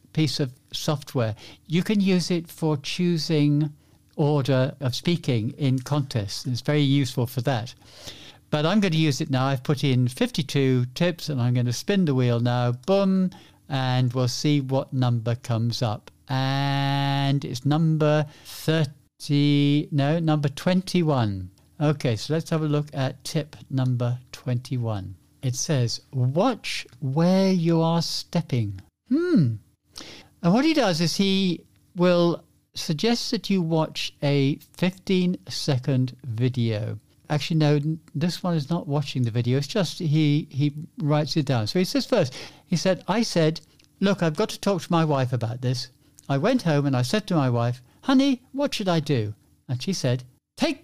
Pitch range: 125-175 Hz